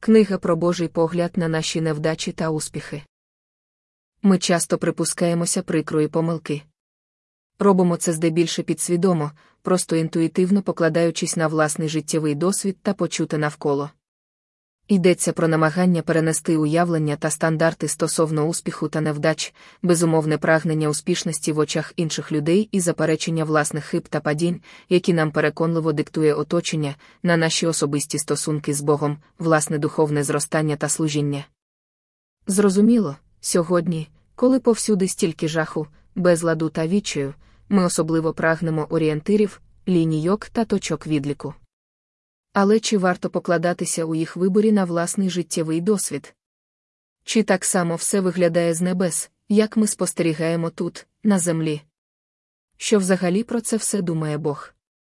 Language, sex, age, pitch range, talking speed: Ukrainian, female, 20-39, 155-180 Hz, 125 wpm